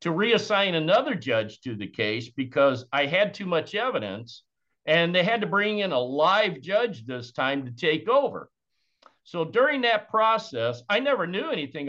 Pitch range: 140-215 Hz